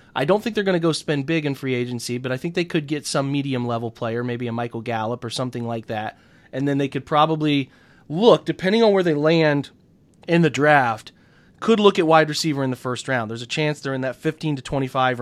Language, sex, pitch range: English, male, 120-155 Hz